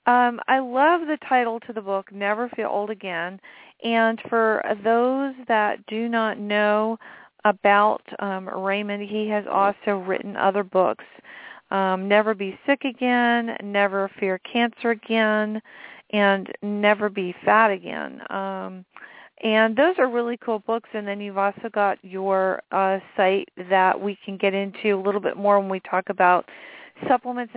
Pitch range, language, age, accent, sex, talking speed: 195-230 Hz, English, 40-59, American, female, 155 wpm